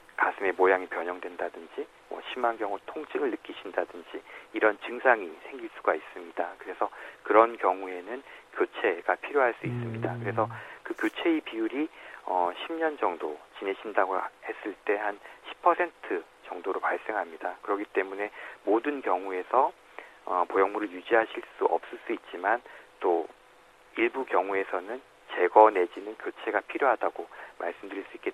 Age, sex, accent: 40-59, male, native